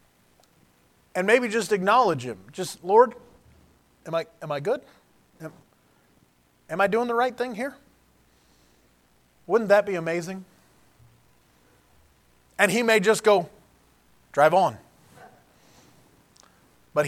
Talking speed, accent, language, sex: 110 wpm, American, English, male